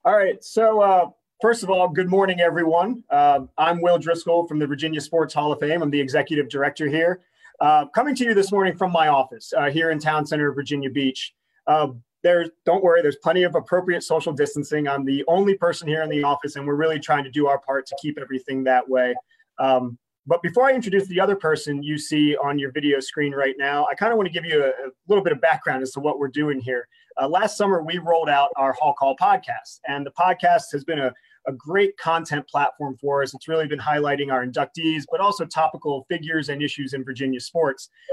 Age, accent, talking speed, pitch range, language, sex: 30-49, American, 230 wpm, 140-175 Hz, English, male